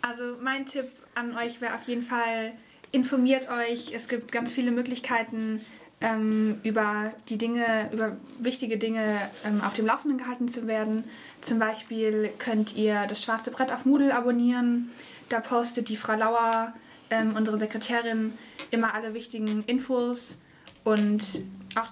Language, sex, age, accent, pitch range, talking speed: German, female, 20-39, German, 220-250 Hz, 150 wpm